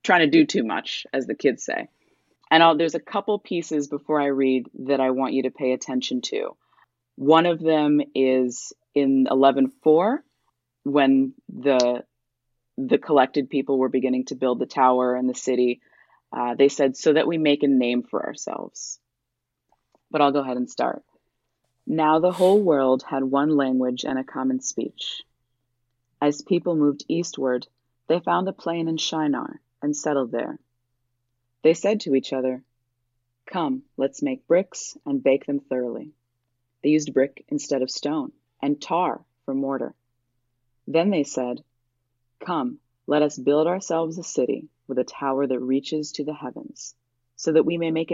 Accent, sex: American, female